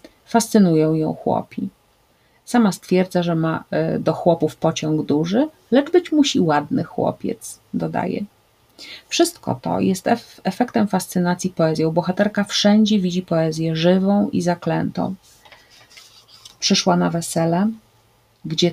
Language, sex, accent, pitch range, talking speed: Polish, female, native, 160-195 Hz, 110 wpm